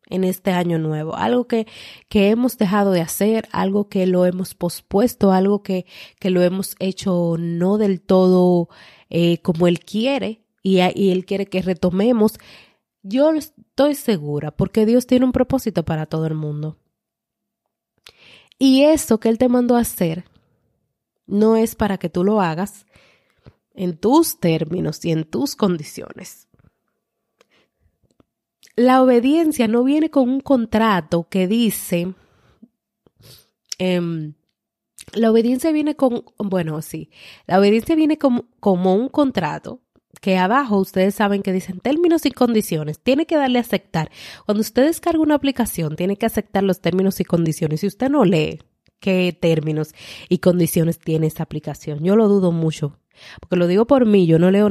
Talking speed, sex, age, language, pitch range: 155 wpm, female, 30-49, Spanish, 175-230 Hz